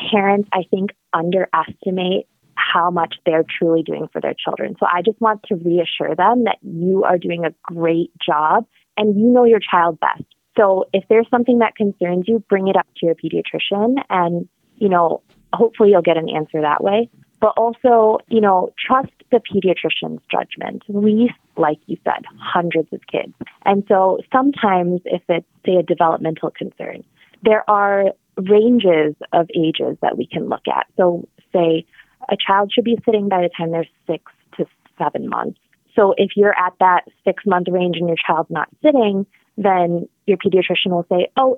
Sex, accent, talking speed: female, American, 180 wpm